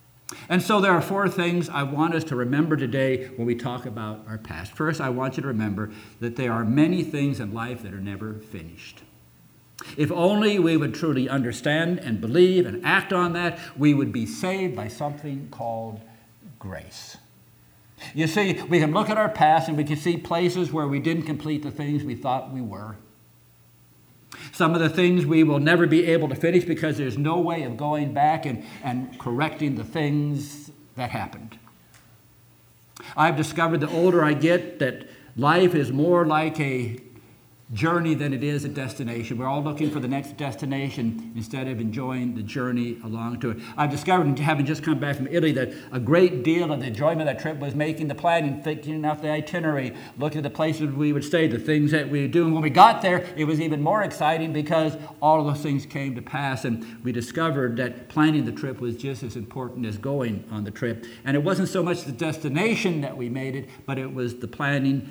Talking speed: 205 wpm